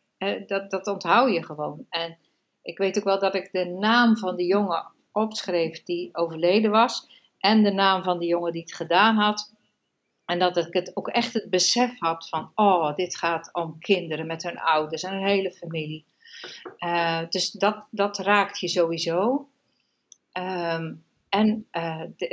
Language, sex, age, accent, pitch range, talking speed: Dutch, female, 50-69, Dutch, 175-210 Hz, 170 wpm